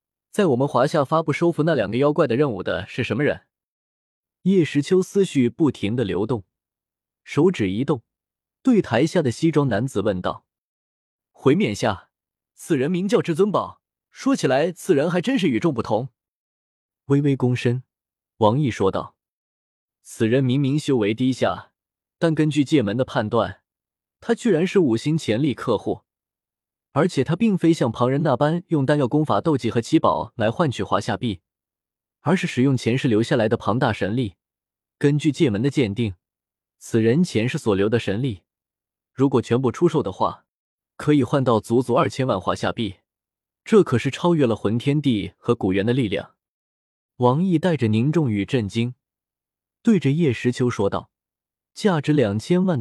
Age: 20-39